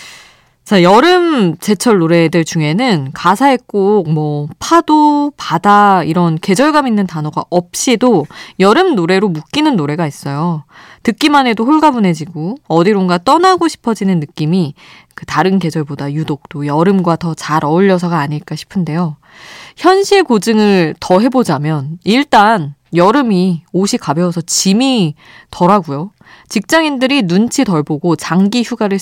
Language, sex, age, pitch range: Korean, female, 20-39, 160-235 Hz